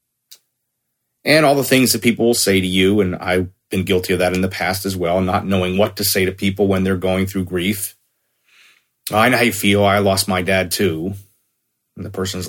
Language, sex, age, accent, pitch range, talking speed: English, male, 40-59, American, 95-120 Hz, 220 wpm